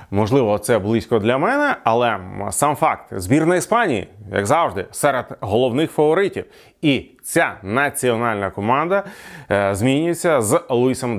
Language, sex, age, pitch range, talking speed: Ukrainian, male, 30-49, 105-145 Hz, 120 wpm